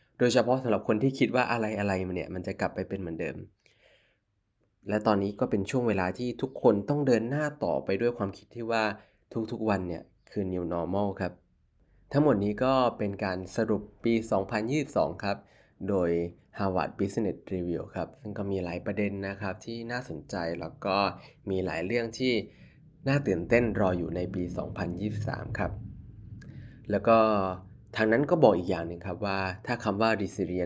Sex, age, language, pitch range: male, 20-39, Thai, 95-115 Hz